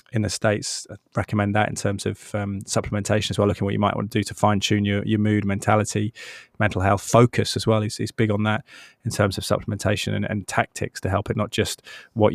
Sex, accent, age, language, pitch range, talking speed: male, British, 20-39, English, 100-110 Hz, 250 wpm